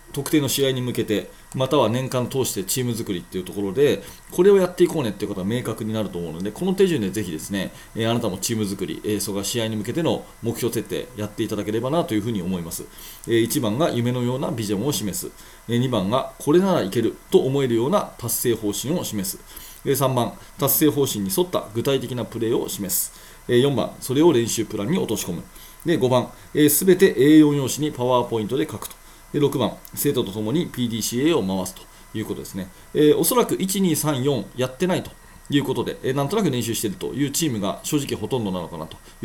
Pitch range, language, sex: 110-160 Hz, Japanese, male